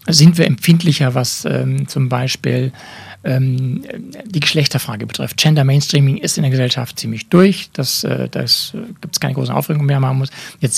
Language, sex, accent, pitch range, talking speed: German, male, German, 135-165 Hz, 160 wpm